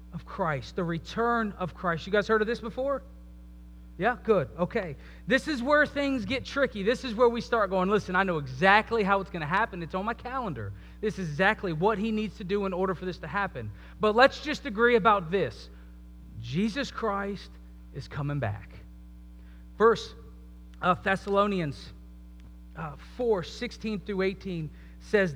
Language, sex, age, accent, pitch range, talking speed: English, male, 30-49, American, 140-220 Hz, 175 wpm